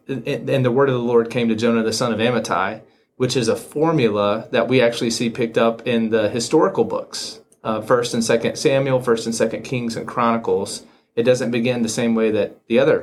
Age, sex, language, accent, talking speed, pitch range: 30-49, male, English, American, 215 wpm, 115-135 Hz